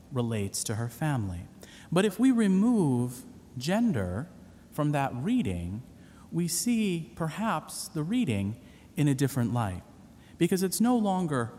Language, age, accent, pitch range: English, 40-59, American, 100-160 Hz